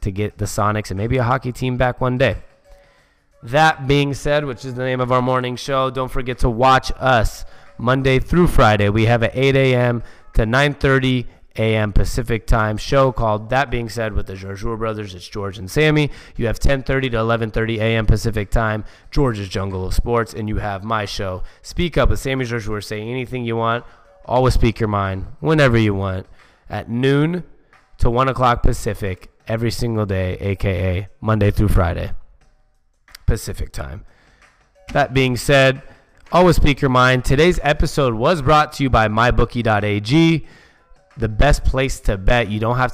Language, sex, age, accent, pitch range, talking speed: English, male, 20-39, American, 105-130 Hz, 175 wpm